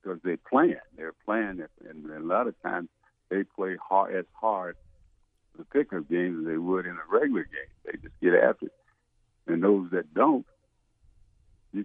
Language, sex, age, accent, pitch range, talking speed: English, male, 60-79, American, 90-125 Hz, 175 wpm